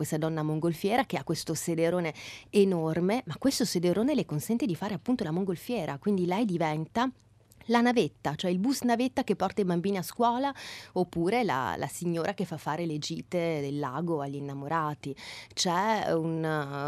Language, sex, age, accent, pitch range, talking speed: Italian, female, 30-49, native, 155-205 Hz, 175 wpm